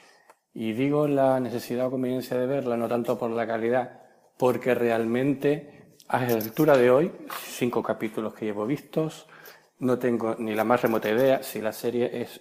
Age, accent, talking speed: 40-59, Spanish, 175 wpm